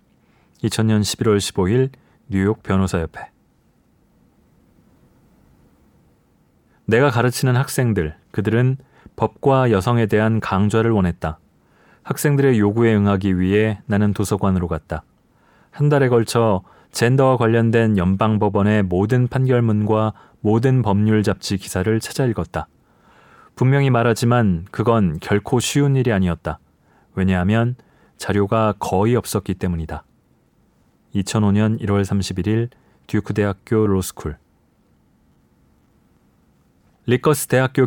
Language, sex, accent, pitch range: Korean, male, native, 95-120 Hz